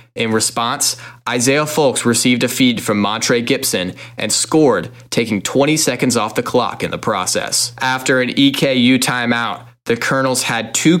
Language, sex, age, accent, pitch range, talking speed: English, male, 20-39, American, 120-135 Hz, 160 wpm